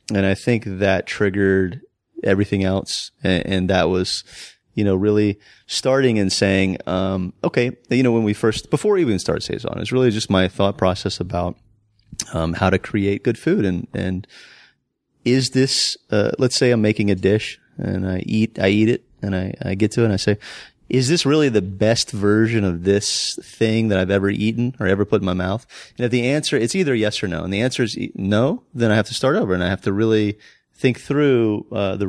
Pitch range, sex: 95-120 Hz, male